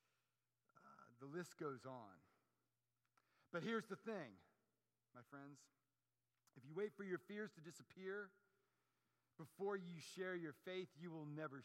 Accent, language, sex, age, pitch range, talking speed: American, English, male, 50-69, 120-175 Hz, 135 wpm